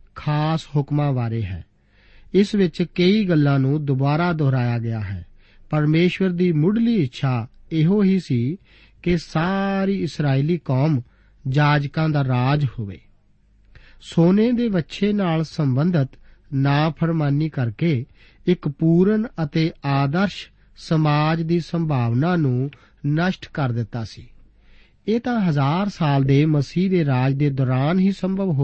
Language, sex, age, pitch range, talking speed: Punjabi, male, 50-69, 125-175 Hz, 95 wpm